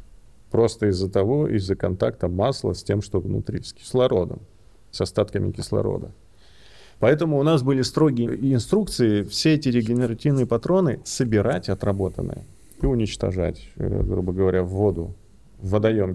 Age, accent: 30-49, native